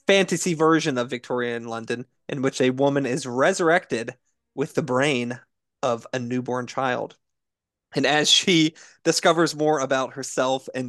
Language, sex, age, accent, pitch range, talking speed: English, male, 20-39, American, 120-150 Hz, 150 wpm